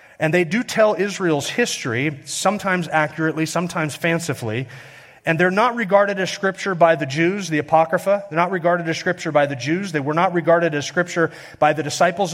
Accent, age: American, 40-59